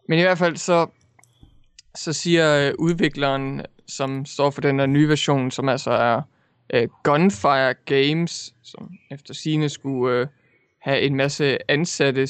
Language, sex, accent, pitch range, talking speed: English, male, Danish, 135-165 Hz, 135 wpm